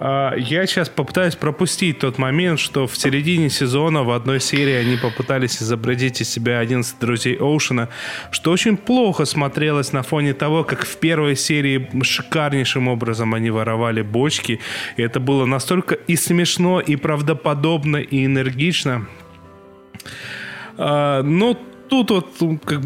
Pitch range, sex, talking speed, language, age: 130-165 Hz, male, 135 wpm, Russian, 20-39